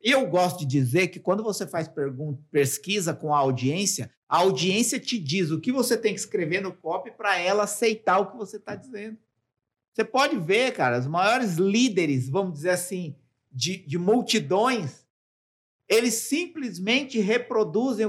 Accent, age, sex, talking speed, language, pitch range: Brazilian, 50-69, male, 165 wpm, Portuguese, 190-250 Hz